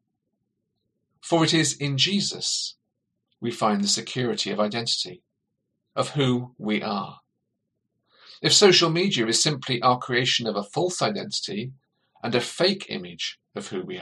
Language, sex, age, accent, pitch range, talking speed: English, male, 40-59, British, 120-175 Hz, 140 wpm